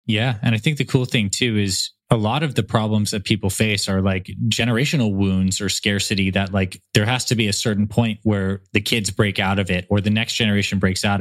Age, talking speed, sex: 20-39, 240 wpm, male